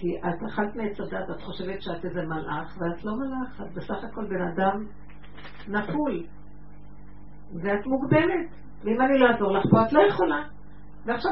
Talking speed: 165 wpm